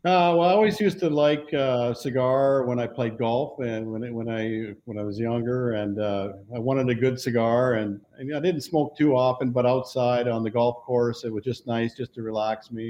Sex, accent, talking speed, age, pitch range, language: male, American, 235 wpm, 50-69, 115-130 Hz, English